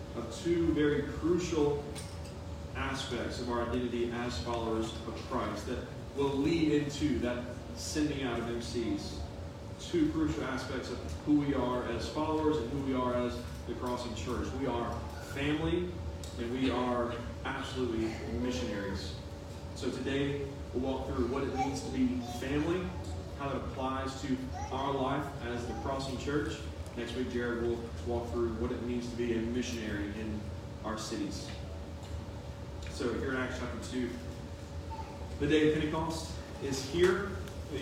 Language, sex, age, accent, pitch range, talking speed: English, male, 30-49, American, 95-150 Hz, 150 wpm